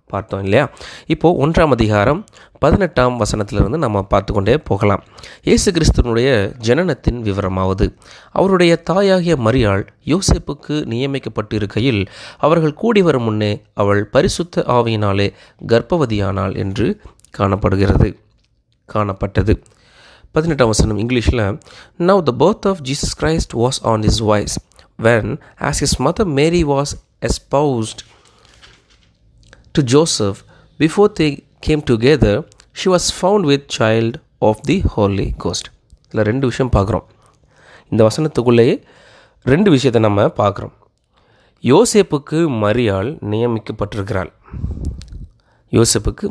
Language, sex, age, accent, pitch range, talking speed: Tamil, male, 20-39, native, 100-140 Hz, 100 wpm